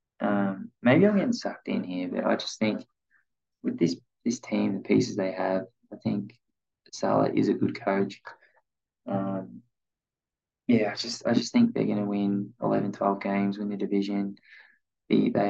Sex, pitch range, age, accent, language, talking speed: male, 100-105 Hz, 20-39, Australian, English, 170 wpm